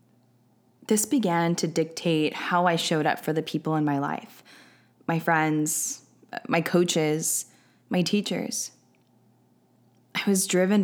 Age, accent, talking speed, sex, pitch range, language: 10-29, American, 125 wpm, female, 150-175 Hz, English